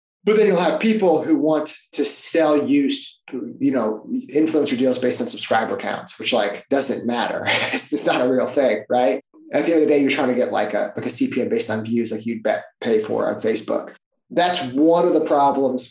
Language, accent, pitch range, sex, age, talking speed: English, American, 120-160 Hz, male, 20-39, 225 wpm